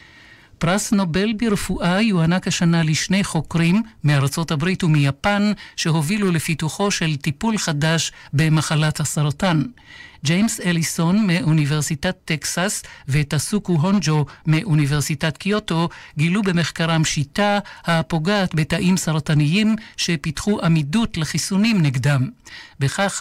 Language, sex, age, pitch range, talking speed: Hebrew, male, 60-79, 150-185 Hz, 90 wpm